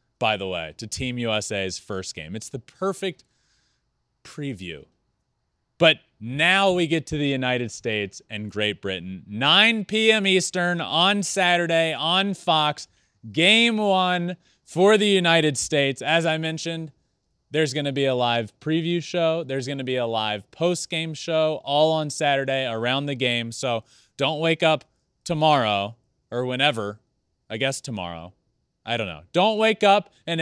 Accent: American